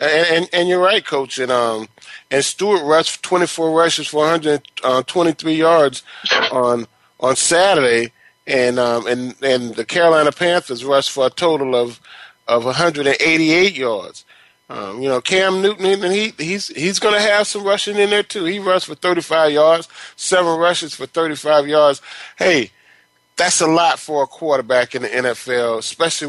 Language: English